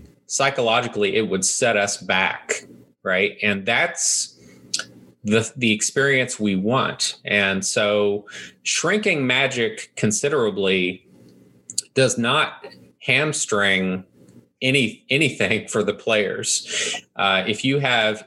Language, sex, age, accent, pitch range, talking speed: English, male, 30-49, American, 100-125 Hz, 100 wpm